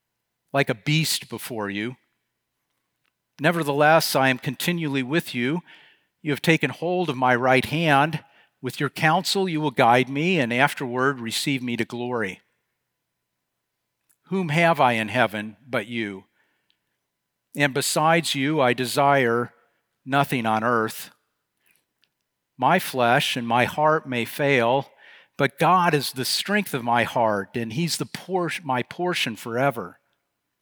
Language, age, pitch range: English, 50-69, 125-160 Hz